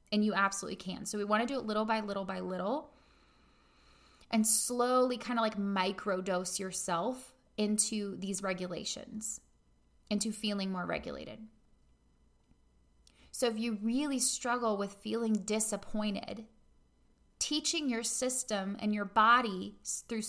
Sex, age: female, 20-39